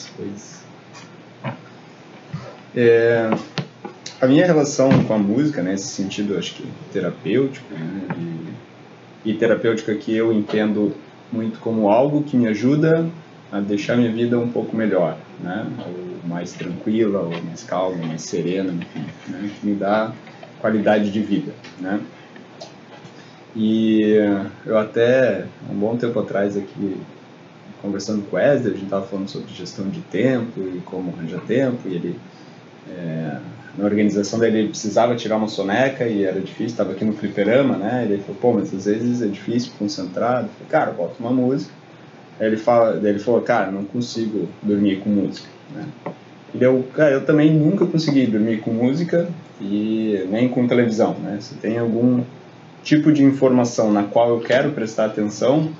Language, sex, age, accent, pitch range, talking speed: Portuguese, male, 20-39, Brazilian, 100-120 Hz, 160 wpm